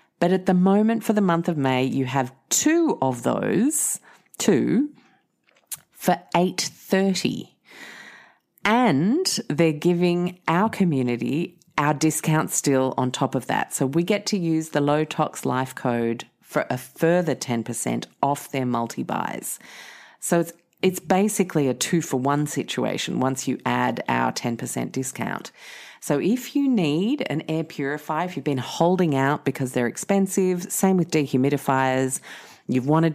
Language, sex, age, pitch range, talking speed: English, female, 40-59, 130-170 Hz, 145 wpm